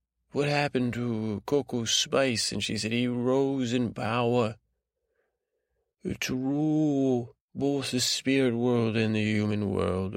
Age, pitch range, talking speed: 30-49, 100-120 Hz, 130 wpm